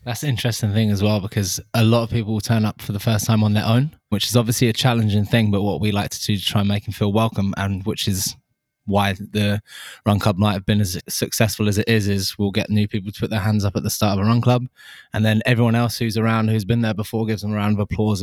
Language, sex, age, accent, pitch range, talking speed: English, male, 20-39, British, 105-115 Hz, 290 wpm